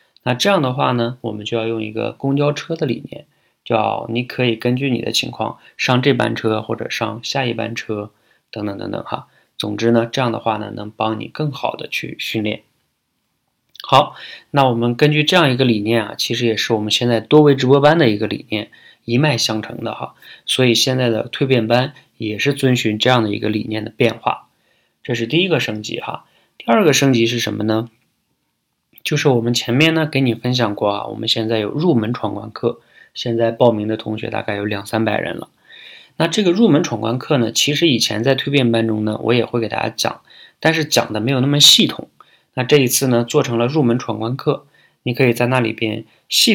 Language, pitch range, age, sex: Chinese, 110-130 Hz, 20-39, male